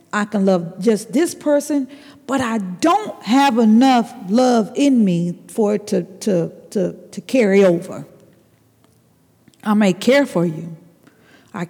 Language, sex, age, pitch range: English, female, 50-69, 185-270 Hz